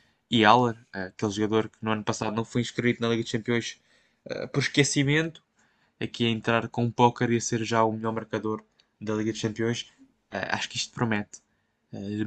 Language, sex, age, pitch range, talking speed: Portuguese, male, 10-29, 105-120 Hz, 200 wpm